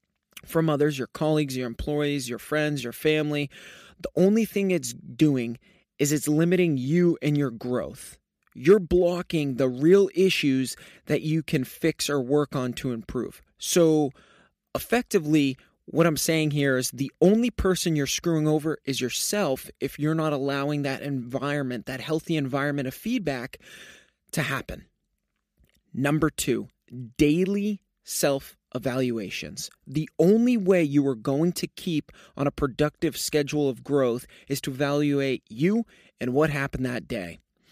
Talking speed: 145 wpm